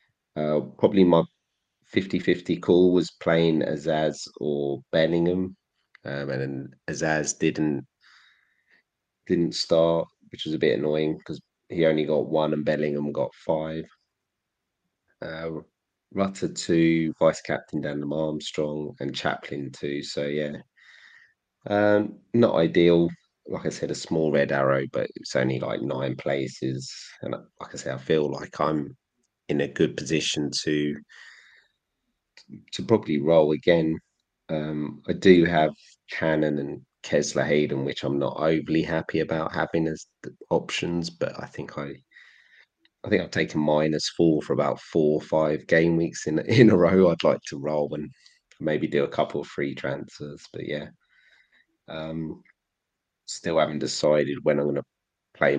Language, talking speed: English, 150 wpm